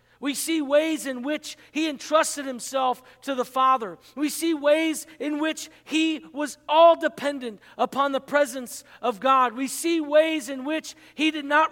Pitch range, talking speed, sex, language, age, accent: 170-275 Hz, 170 wpm, male, English, 40-59, American